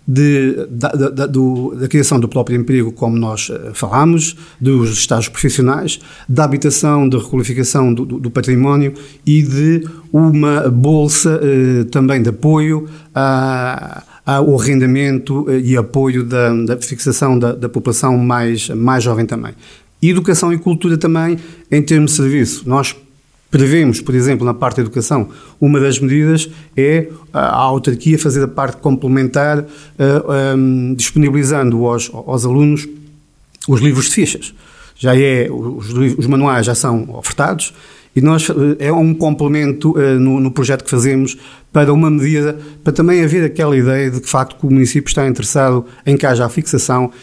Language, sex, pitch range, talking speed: Portuguese, male, 125-150 Hz, 155 wpm